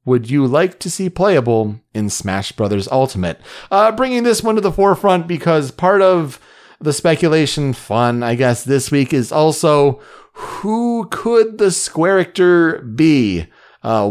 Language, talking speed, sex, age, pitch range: English, 155 wpm, male, 30-49, 110-155 Hz